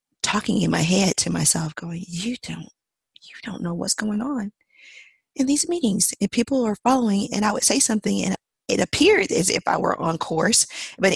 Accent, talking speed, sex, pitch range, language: American, 200 wpm, female, 170-215 Hz, English